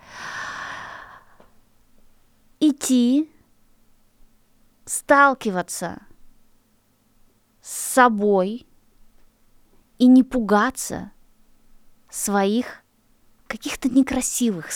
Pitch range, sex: 185-250 Hz, female